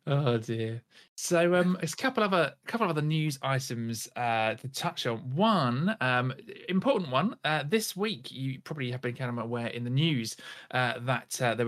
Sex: male